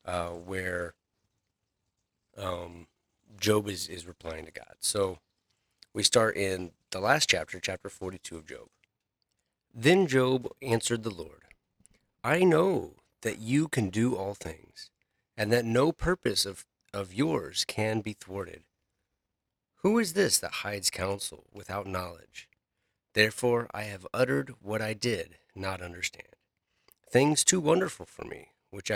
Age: 30-49